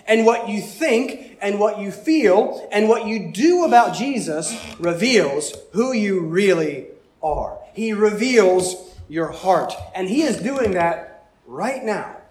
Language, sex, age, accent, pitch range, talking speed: English, male, 30-49, American, 185-255 Hz, 145 wpm